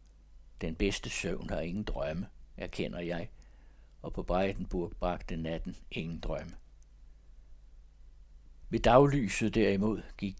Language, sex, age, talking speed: Danish, male, 60-79, 110 wpm